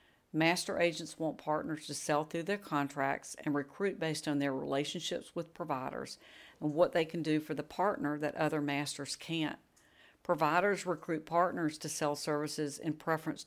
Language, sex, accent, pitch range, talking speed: English, female, American, 145-175 Hz, 165 wpm